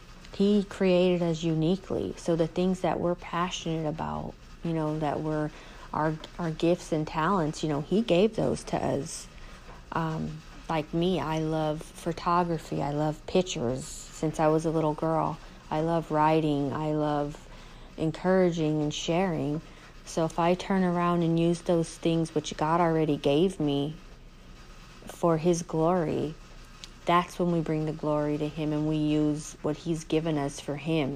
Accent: American